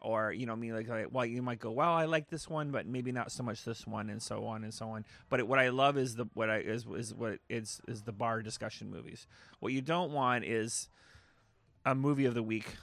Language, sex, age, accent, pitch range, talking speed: English, male, 30-49, American, 110-125 Hz, 265 wpm